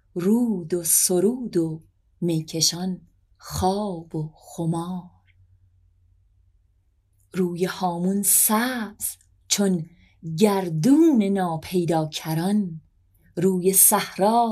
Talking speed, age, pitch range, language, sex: 70 wpm, 30-49, 155-205 Hz, Persian, female